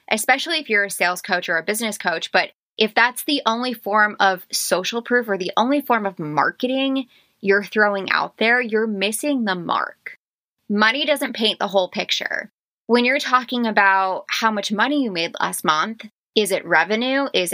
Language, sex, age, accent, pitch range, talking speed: English, female, 20-39, American, 195-250 Hz, 185 wpm